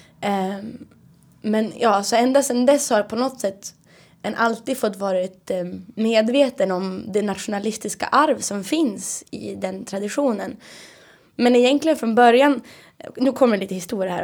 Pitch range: 190-235 Hz